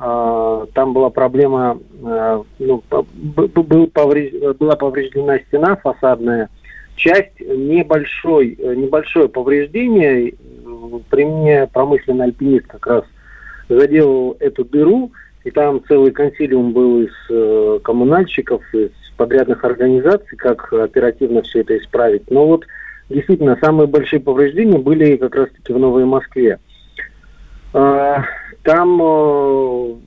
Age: 40-59